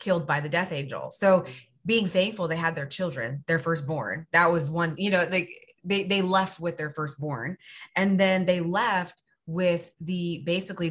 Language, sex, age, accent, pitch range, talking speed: English, female, 20-39, American, 155-190 Hz, 185 wpm